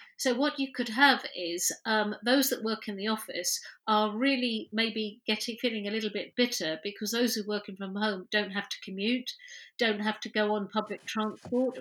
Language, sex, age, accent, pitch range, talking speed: English, female, 50-69, British, 200-250 Hz, 205 wpm